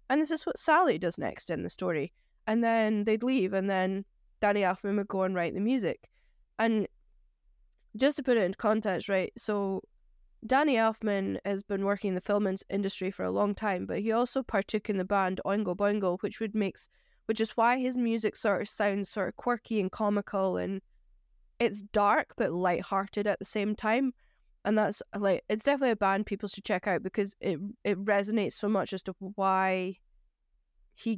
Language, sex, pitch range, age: English, female, 185-220 Hz, 10-29